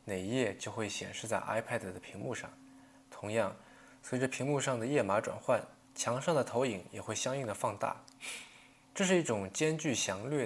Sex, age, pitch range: male, 20-39, 105-135 Hz